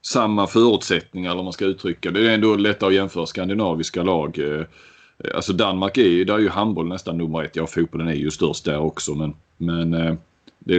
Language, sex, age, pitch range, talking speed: Swedish, male, 30-49, 85-110 Hz, 200 wpm